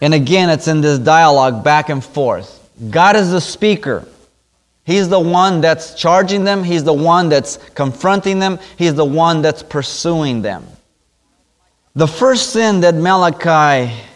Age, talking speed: 20-39, 155 wpm